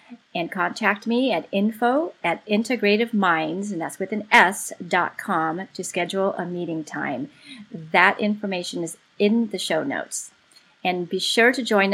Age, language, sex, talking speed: 30-49, English, female, 155 wpm